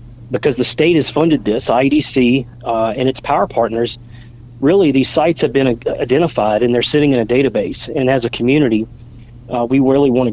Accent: American